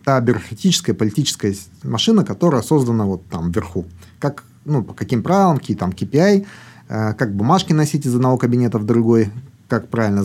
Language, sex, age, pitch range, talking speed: Russian, male, 30-49, 110-150 Hz, 165 wpm